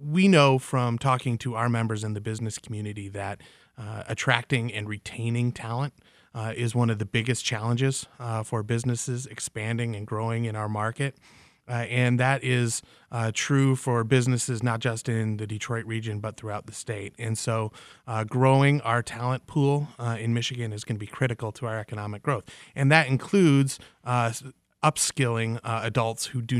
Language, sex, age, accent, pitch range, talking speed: English, male, 30-49, American, 115-135 Hz, 175 wpm